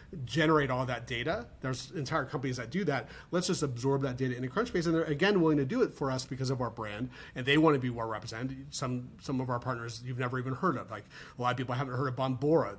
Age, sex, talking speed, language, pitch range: 30-49, male, 265 wpm, English, 125-160 Hz